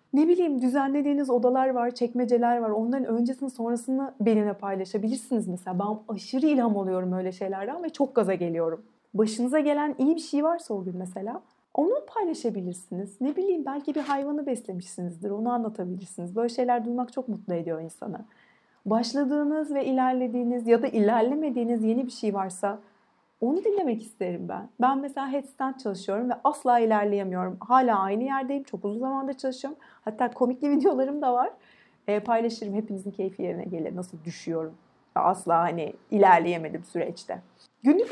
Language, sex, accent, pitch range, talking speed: Turkish, female, native, 200-270 Hz, 150 wpm